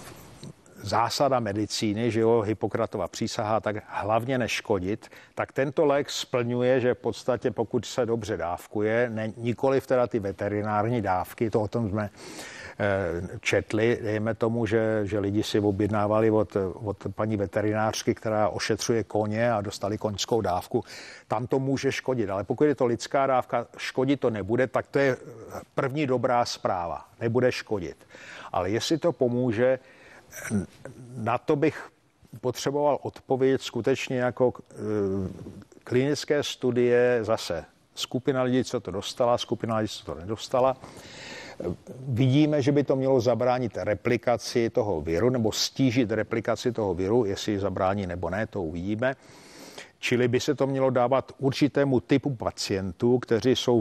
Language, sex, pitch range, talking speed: Czech, male, 105-130 Hz, 140 wpm